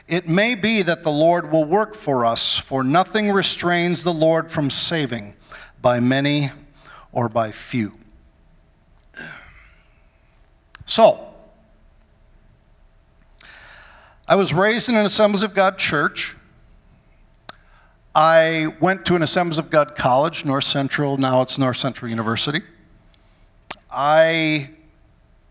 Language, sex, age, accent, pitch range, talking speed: English, male, 50-69, American, 130-175 Hz, 115 wpm